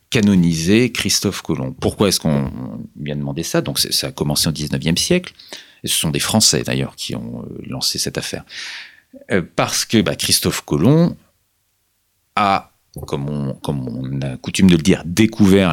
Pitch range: 75-100 Hz